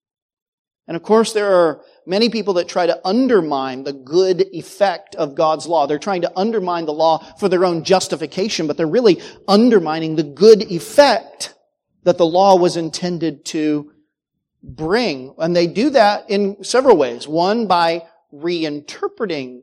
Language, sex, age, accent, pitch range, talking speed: English, male, 40-59, American, 155-190 Hz, 155 wpm